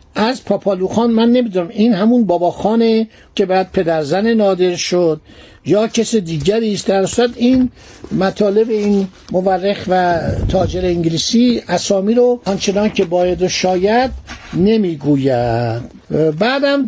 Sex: male